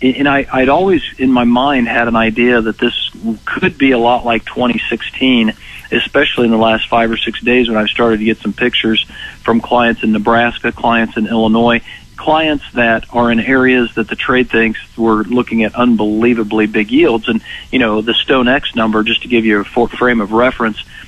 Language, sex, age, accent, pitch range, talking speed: English, male, 40-59, American, 110-120 Hz, 195 wpm